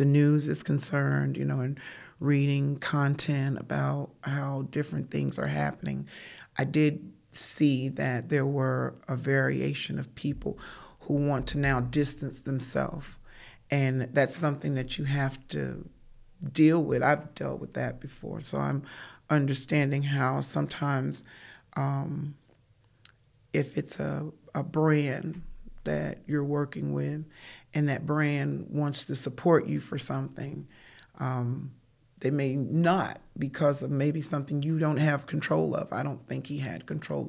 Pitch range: 120-150 Hz